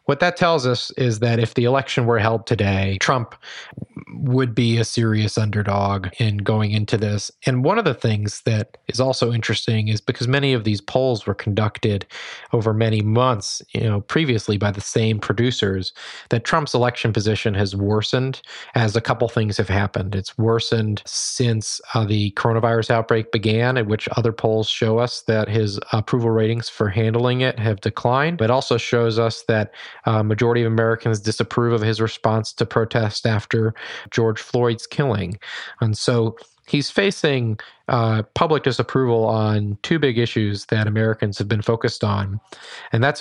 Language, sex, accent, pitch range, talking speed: English, male, American, 110-125 Hz, 170 wpm